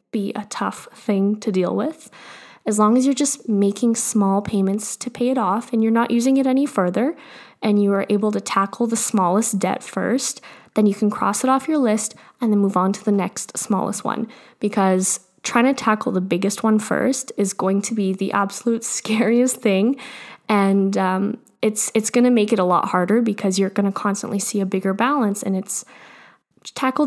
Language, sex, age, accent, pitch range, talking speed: English, female, 20-39, American, 195-235 Hz, 205 wpm